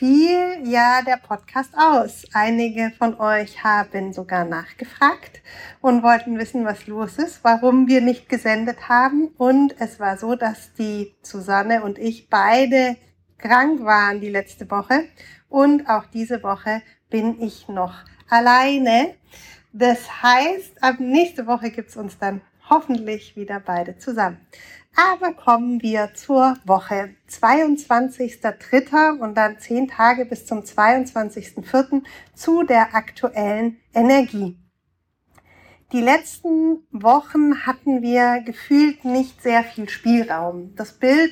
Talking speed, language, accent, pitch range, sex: 125 wpm, German, German, 220-270 Hz, female